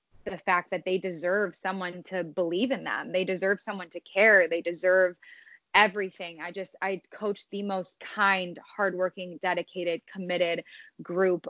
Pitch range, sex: 175-210 Hz, female